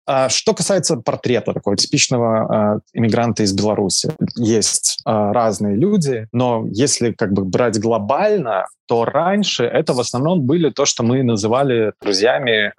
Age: 20-39